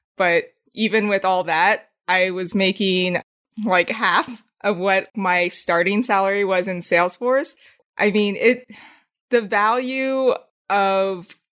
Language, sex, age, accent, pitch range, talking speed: English, female, 20-39, American, 185-230 Hz, 125 wpm